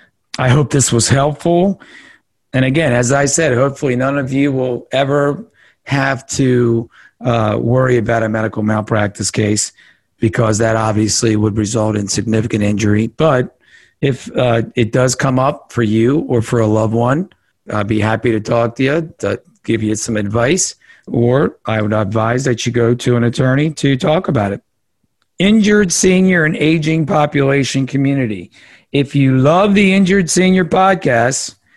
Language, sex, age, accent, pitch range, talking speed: English, male, 50-69, American, 115-145 Hz, 160 wpm